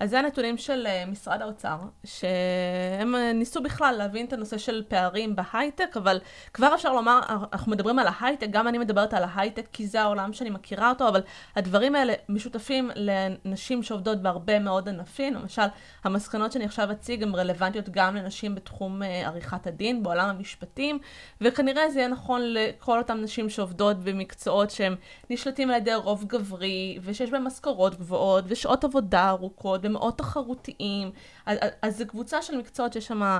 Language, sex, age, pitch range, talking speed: Hebrew, female, 20-39, 195-250 Hz, 160 wpm